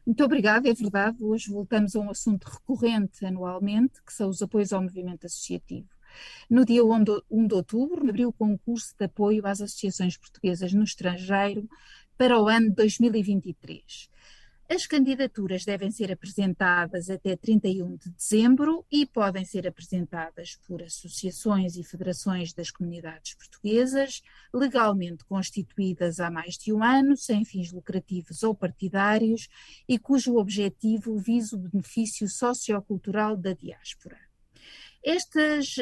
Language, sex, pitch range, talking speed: Portuguese, female, 195-235 Hz, 130 wpm